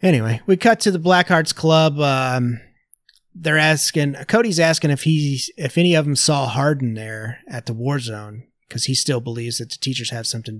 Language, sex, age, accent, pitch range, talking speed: English, male, 30-49, American, 120-160 Hz, 185 wpm